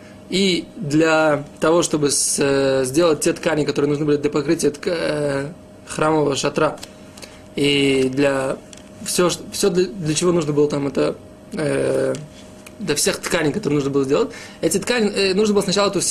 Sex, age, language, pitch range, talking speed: male, 20-39, Russian, 150-190 Hz, 170 wpm